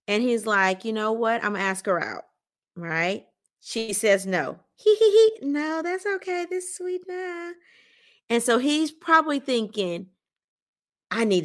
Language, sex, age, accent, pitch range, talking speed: English, female, 30-49, American, 190-280 Hz, 175 wpm